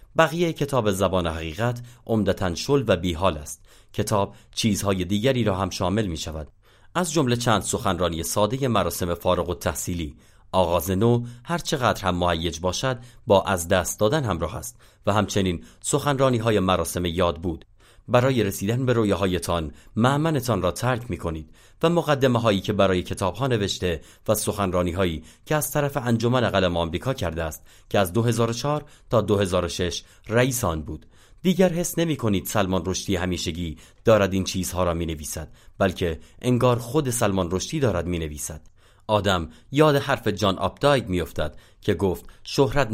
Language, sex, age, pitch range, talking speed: Persian, male, 30-49, 90-120 Hz, 155 wpm